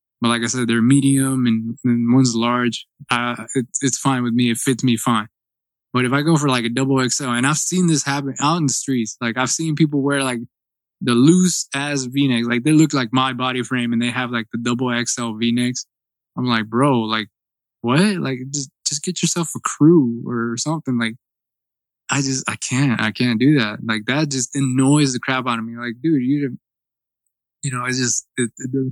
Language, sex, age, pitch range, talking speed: English, male, 20-39, 120-145 Hz, 220 wpm